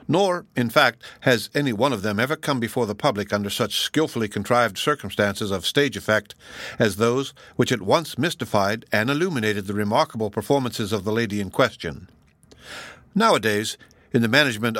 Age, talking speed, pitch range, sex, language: 60-79, 165 wpm, 110-140 Hz, male, English